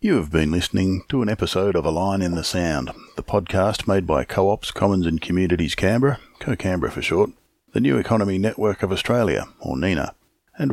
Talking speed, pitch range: 190 wpm, 80-100 Hz